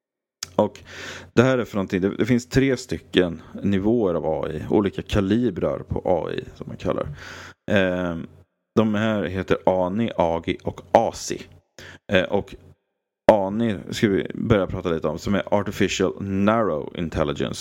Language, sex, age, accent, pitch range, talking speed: English, male, 30-49, Swedish, 90-110 Hz, 135 wpm